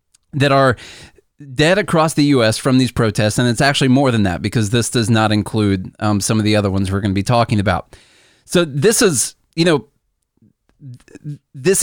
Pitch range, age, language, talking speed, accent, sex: 110-150 Hz, 30-49, English, 190 wpm, American, male